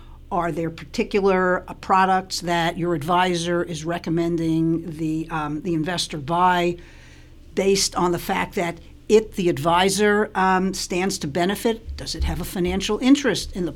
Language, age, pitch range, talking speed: English, 60-79, 160-205 Hz, 155 wpm